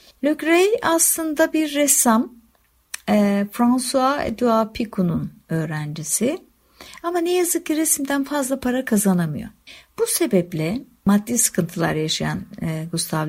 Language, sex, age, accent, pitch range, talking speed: Turkish, female, 60-79, native, 185-275 Hz, 100 wpm